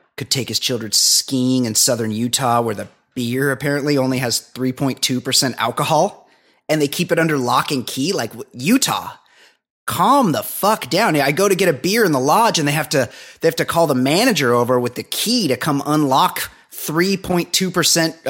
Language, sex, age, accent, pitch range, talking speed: English, male, 30-49, American, 125-165 Hz, 185 wpm